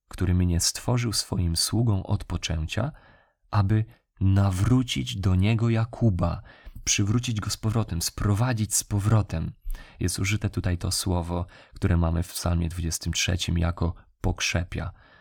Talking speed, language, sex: 120 wpm, Polish, male